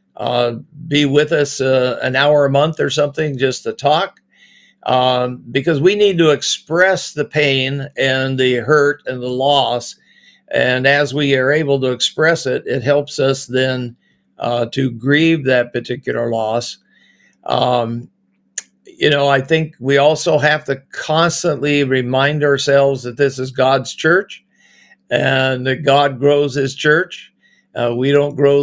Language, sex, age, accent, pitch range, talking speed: English, male, 50-69, American, 125-145 Hz, 155 wpm